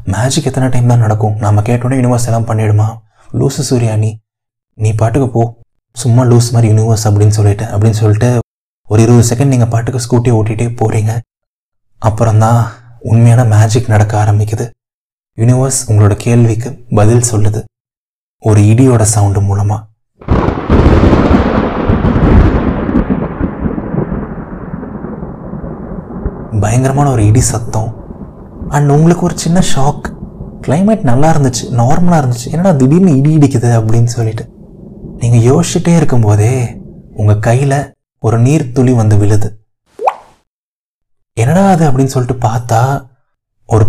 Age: 20-39